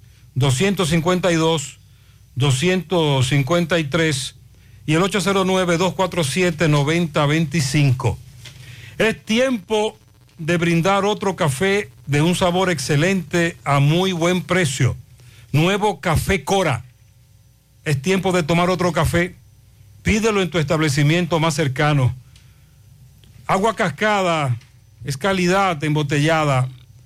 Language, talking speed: Spanish, 85 wpm